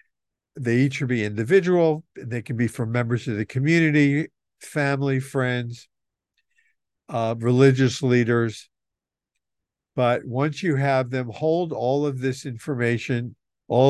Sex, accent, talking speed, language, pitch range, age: male, American, 125 wpm, English, 115-140 Hz, 50-69